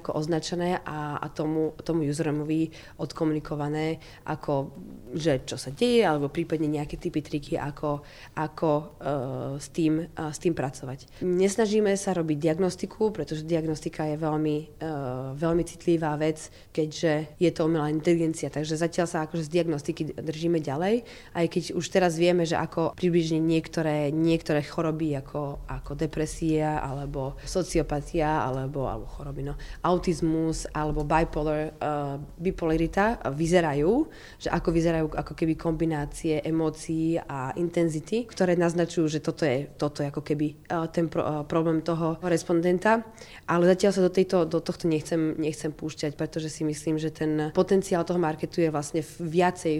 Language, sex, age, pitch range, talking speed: Slovak, female, 20-39, 150-170 Hz, 150 wpm